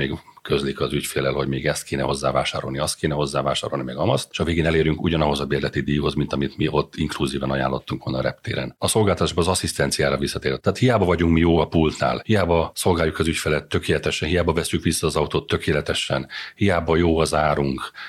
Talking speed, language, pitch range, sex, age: 190 wpm, Hungarian, 70-80 Hz, male, 40-59